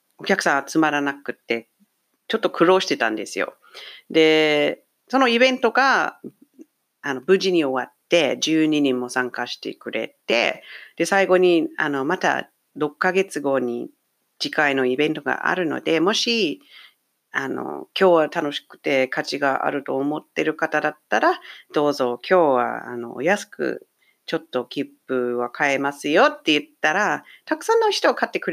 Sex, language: female, English